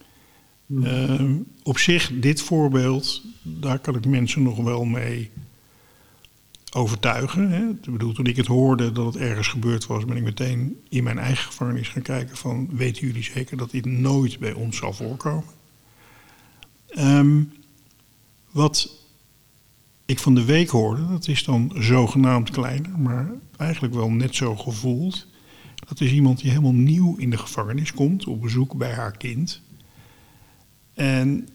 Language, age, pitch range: Dutch, 50-69, 115-140 Hz